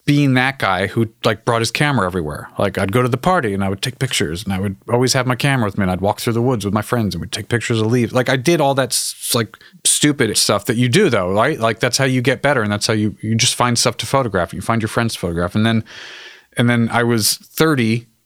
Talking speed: 285 wpm